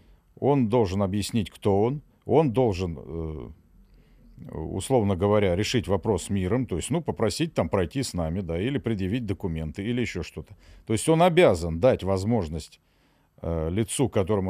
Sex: male